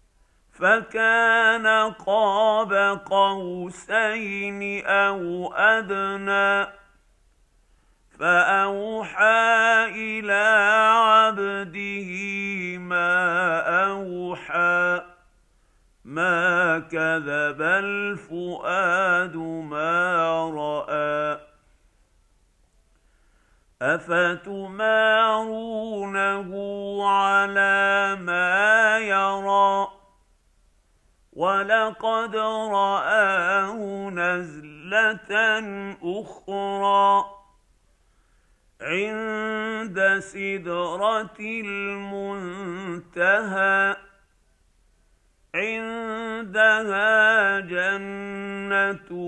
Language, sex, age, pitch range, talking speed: Arabic, male, 50-69, 175-215 Hz, 35 wpm